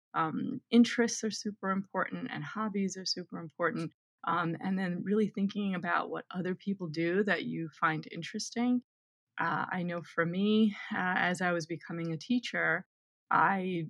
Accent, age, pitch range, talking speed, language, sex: American, 20-39, 165-205 Hz, 160 wpm, English, female